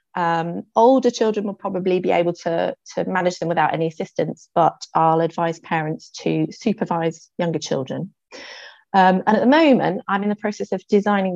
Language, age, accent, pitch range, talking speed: English, 30-49, British, 170-225 Hz, 175 wpm